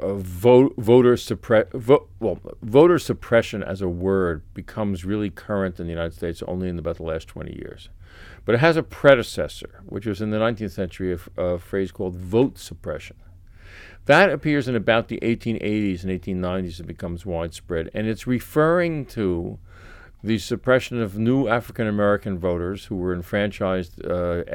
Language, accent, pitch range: English, American, 90-115 Hz